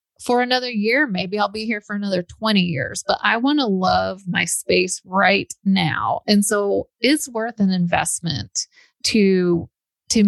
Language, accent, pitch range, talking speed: English, American, 180-215 Hz, 165 wpm